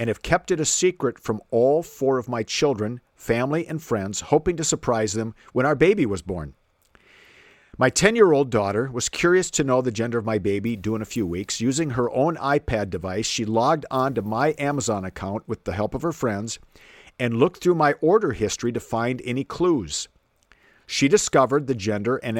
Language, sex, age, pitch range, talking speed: English, male, 50-69, 105-140 Hz, 205 wpm